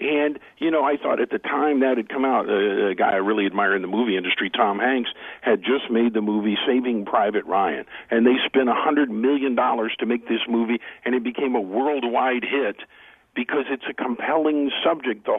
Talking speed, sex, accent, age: 205 wpm, male, American, 50-69